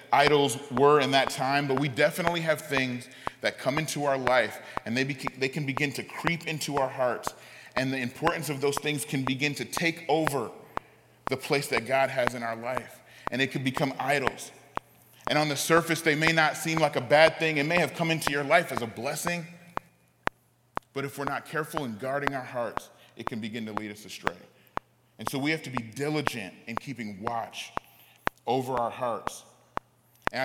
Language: English